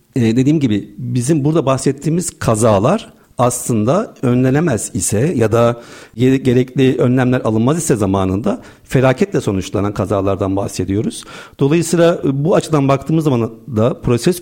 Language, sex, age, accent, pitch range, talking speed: Turkish, male, 50-69, native, 115-150 Hz, 115 wpm